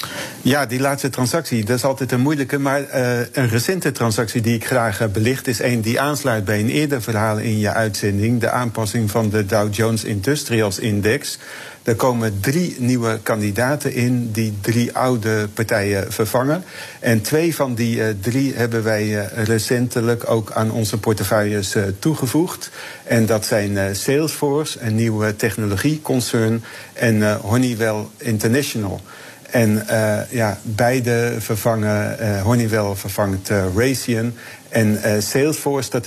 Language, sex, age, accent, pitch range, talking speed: Dutch, male, 50-69, Dutch, 110-125 Hz, 150 wpm